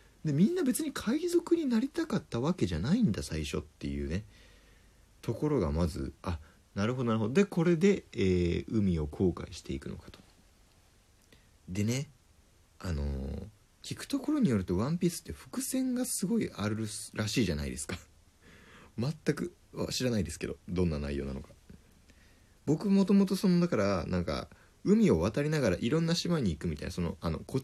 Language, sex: Japanese, male